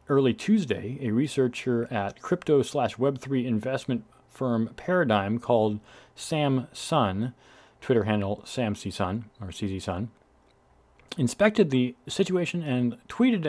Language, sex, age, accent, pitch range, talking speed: English, male, 40-59, American, 105-145 Hz, 110 wpm